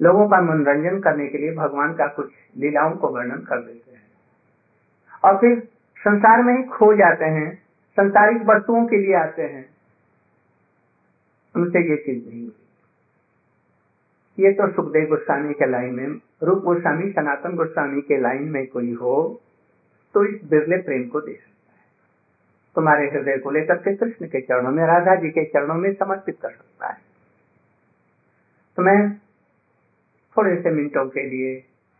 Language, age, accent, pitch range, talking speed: Hindi, 50-69, native, 135-190 Hz, 150 wpm